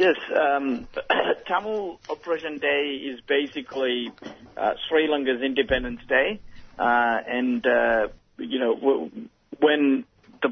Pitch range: 125-145 Hz